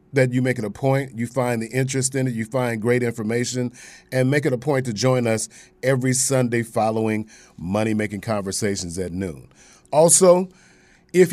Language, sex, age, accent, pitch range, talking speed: English, male, 40-59, American, 110-135 Hz, 180 wpm